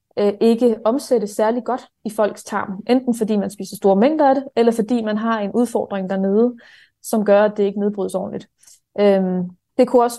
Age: 20-39